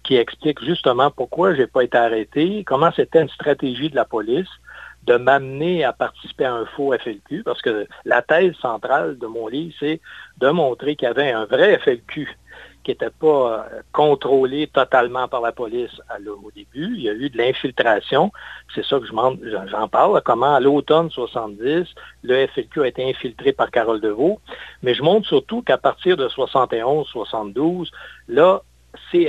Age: 60-79